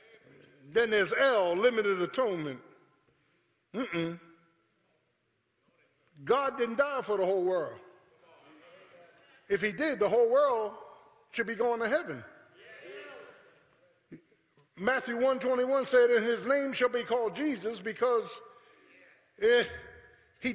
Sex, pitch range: male, 210-275 Hz